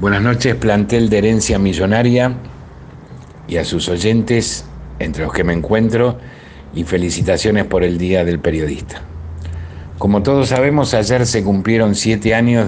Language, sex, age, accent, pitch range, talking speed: Spanish, male, 60-79, Argentinian, 85-110 Hz, 140 wpm